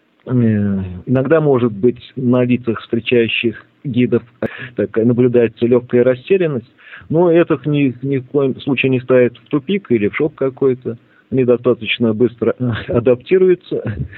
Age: 40-59